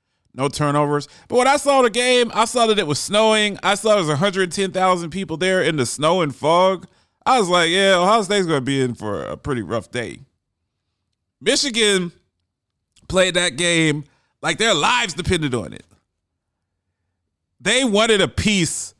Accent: American